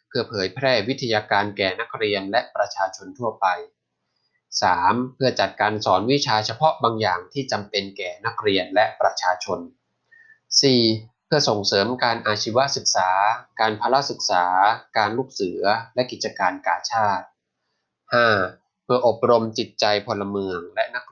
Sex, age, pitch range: male, 20-39, 100-130 Hz